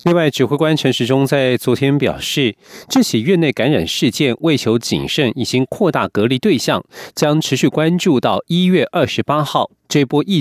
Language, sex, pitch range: Chinese, male, 130-180 Hz